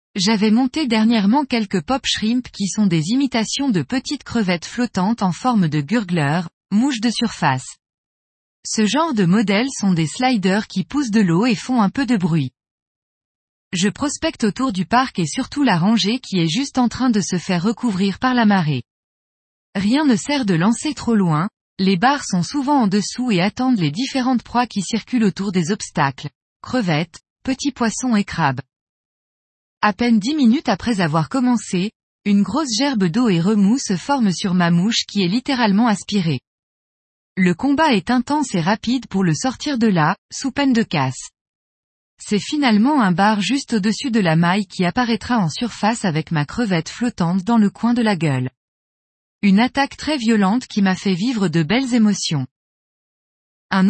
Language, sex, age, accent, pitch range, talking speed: French, female, 20-39, French, 180-245 Hz, 175 wpm